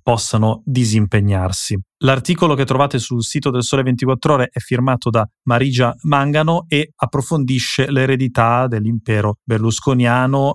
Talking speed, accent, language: 120 wpm, native, Italian